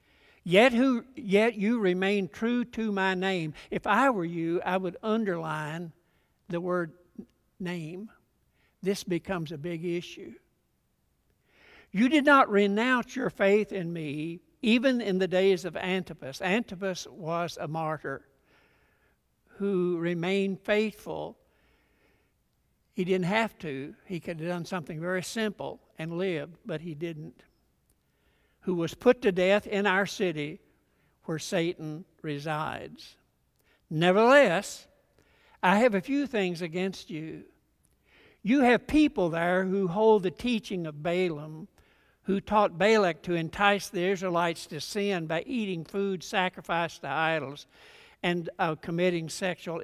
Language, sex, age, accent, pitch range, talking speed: English, male, 60-79, American, 170-205 Hz, 130 wpm